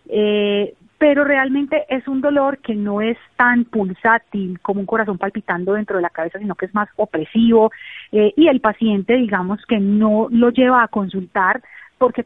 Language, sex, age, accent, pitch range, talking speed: Spanish, female, 30-49, Colombian, 190-240 Hz, 175 wpm